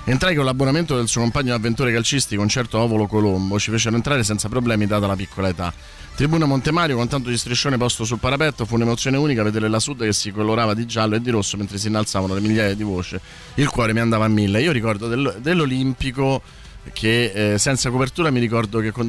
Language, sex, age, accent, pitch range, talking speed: Italian, male, 30-49, native, 100-120 Hz, 210 wpm